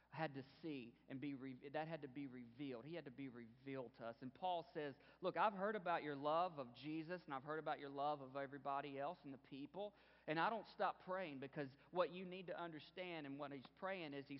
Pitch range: 125-155 Hz